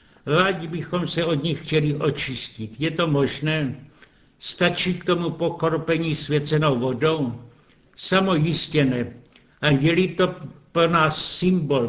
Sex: male